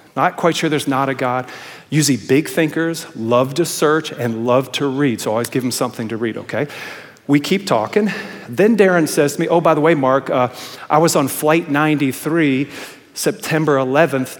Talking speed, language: 190 wpm, English